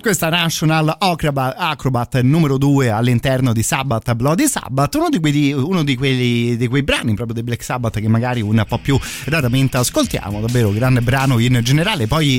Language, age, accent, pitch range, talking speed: Italian, 30-49, native, 115-145 Hz, 185 wpm